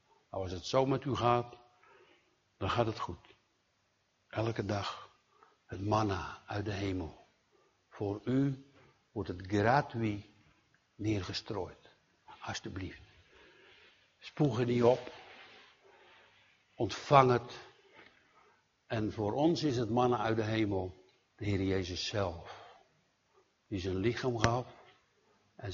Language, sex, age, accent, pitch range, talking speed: Dutch, male, 60-79, Dutch, 105-130 Hz, 110 wpm